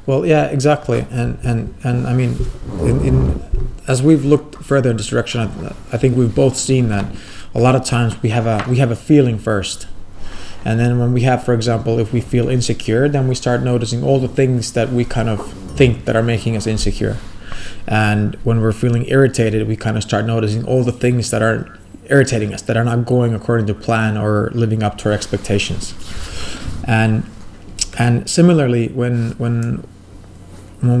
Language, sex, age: English, male, 20-39